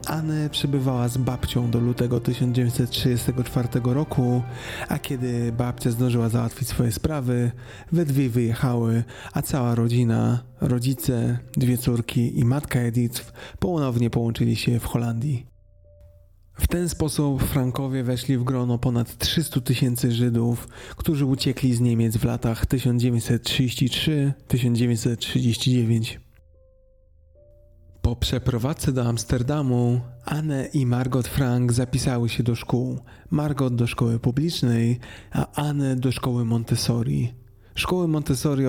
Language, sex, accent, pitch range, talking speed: Polish, male, native, 120-130 Hz, 115 wpm